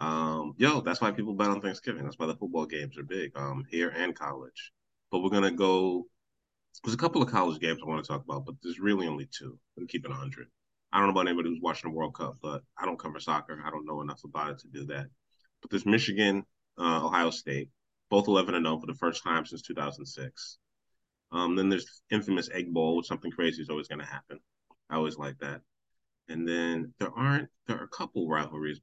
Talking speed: 225 wpm